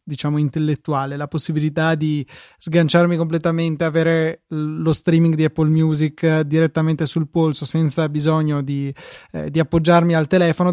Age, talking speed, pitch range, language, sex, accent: 20-39, 130 wpm, 150-170 Hz, Italian, male, native